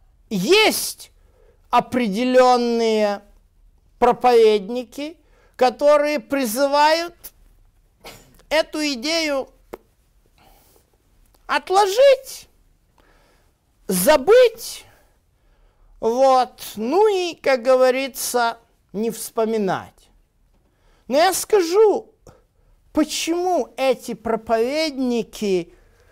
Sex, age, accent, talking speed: male, 50-69, native, 50 wpm